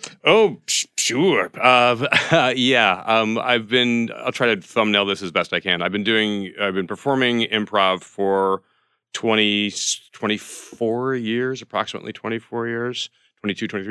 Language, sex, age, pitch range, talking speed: English, male, 40-59, 90-115 Hz, 150 wpm